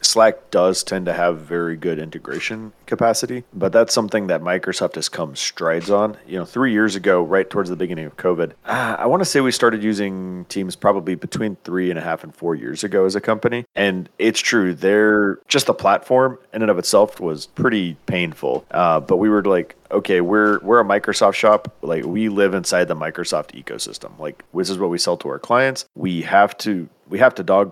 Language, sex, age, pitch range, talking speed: English, male, 40-59, 85-110 Hz, 215 wpm